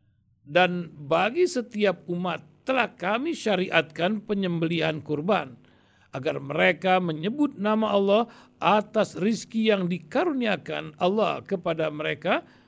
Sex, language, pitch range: male, Indonesian, 155-215 Hz